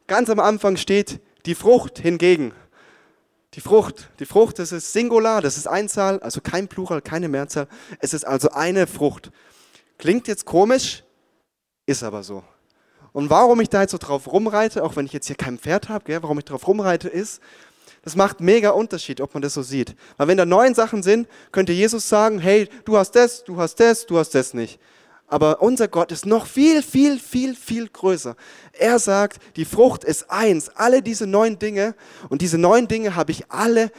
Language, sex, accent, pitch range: German, male, German, 165-230 Hz